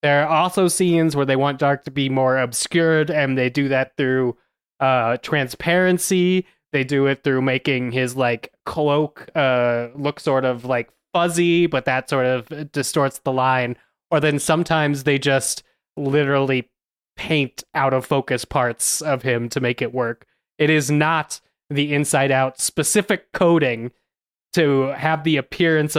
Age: 20-39